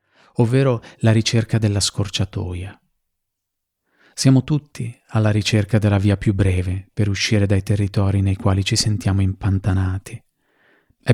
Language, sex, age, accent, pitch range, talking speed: Italian, male, 30-49, native, 100-115 Hz, 125 wpm